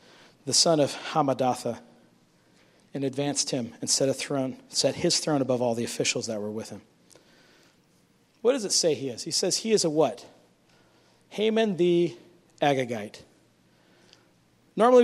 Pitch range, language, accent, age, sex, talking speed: 120-165 Hz, English, American, 40-59, male, 150 wpm